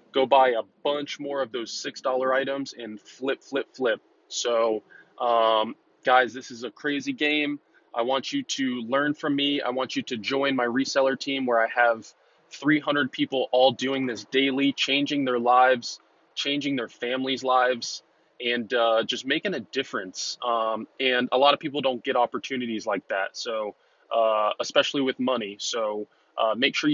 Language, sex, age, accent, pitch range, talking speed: English, male, 20-39, American, 120-140 Hz, 175 wpm